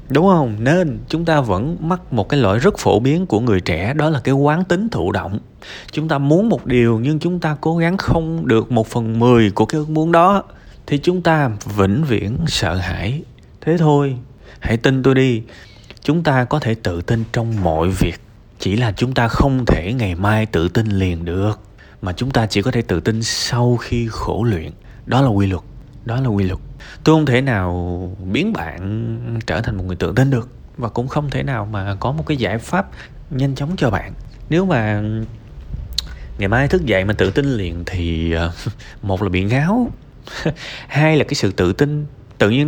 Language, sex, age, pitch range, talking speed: Vietnamese, male, 20-39, 105-150 Hz, 210 wpm